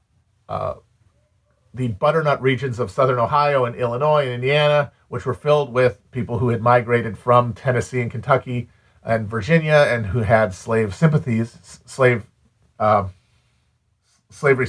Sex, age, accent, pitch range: male, 40-59, American, 110-135 Hz